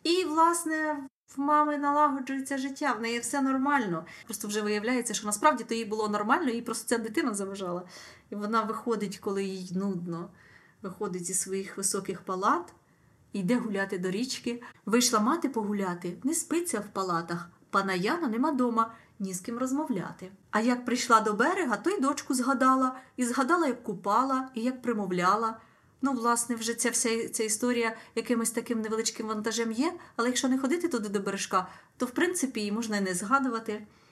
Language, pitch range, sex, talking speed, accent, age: Ukrainian, 200-270 Hz, female, 170 wpm, native, 30-49